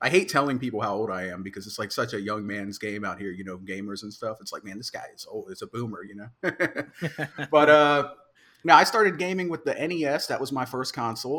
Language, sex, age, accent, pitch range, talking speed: English, male, 30-49, American, 110-140 Hz, 260 wpm